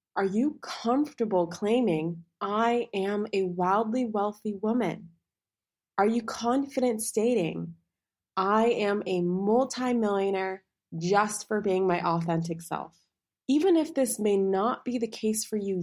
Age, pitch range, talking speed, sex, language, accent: 20-39, 175-230 Hz, 130 wpm, female, English, American